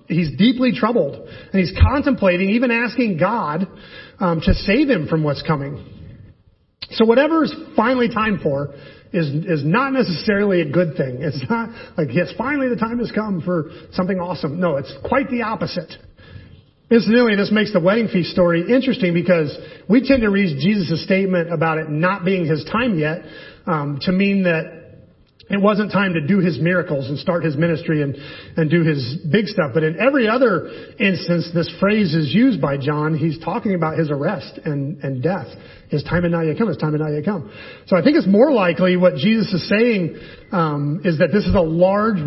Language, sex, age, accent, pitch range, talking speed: English, male, 40-59, American, 160-210 Hz, 195 wpm